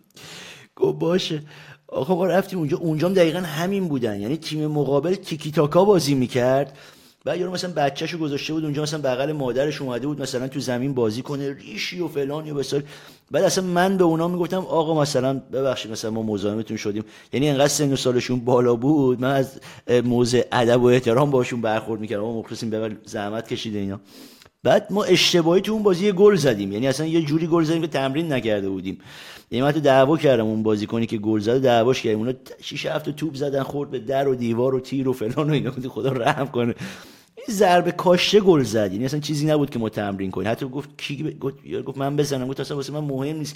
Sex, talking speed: male, 205 wpm